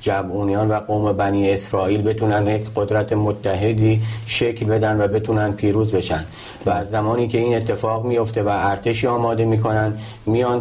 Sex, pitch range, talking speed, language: male, 100-110 Hz, 155 wpm, Persian